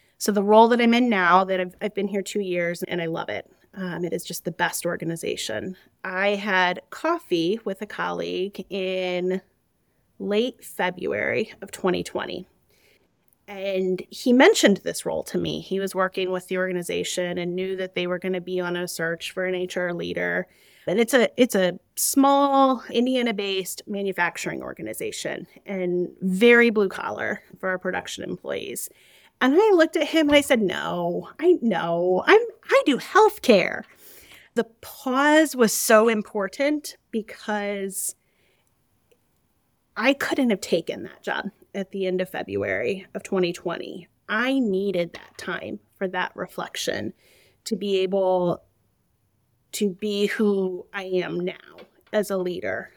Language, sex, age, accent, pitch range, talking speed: English, female, 30-49, American, 180-225 Hz, 150 wpm